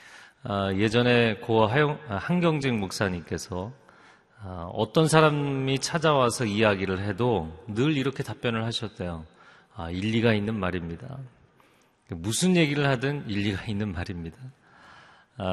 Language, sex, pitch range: Korean, male, 100-140 Hz